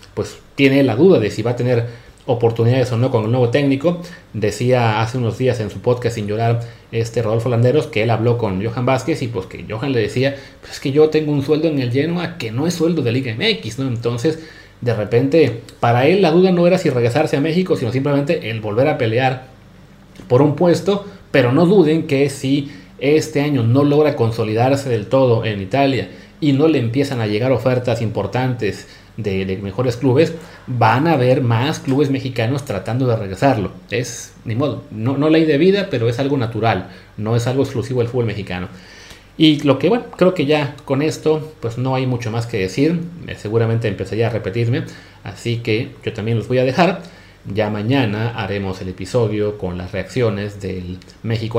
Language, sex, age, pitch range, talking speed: Spanish, male, 30-49, 110-145 Hz, 200 wpm